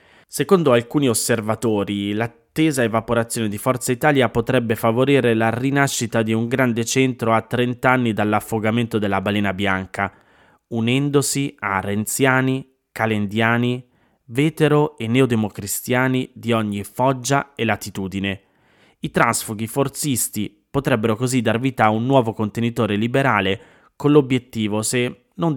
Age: 20-39